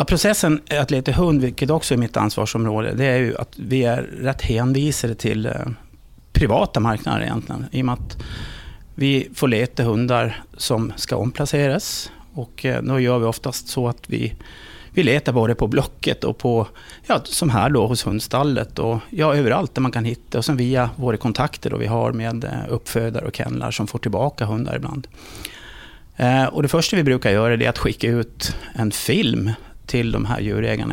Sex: male